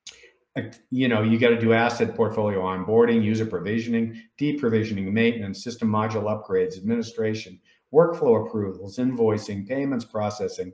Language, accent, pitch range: English, American, 105-120 Hz